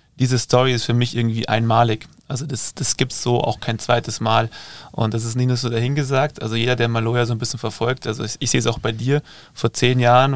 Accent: German